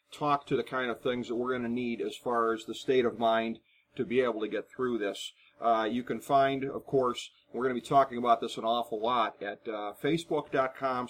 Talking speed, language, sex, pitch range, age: 230 wpm, English, male, 115-130 Hz, 40-59